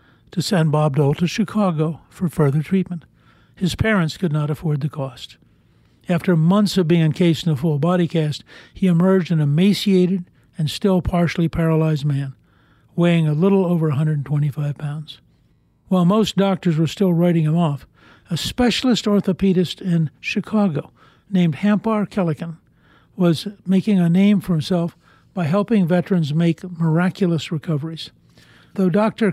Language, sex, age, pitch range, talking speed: English, male, 60-79, 150-185 Hz, 145 wpm